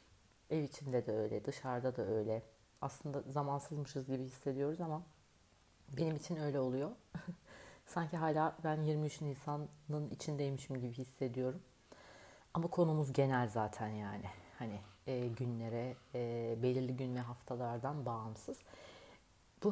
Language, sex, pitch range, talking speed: Turkish, female, 120-160 Hz, 120 wpm